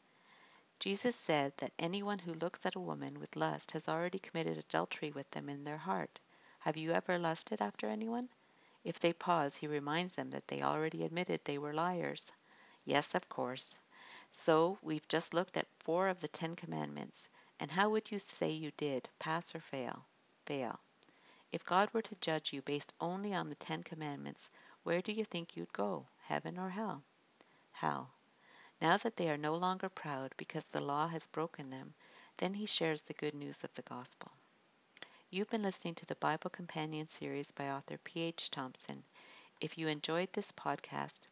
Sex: female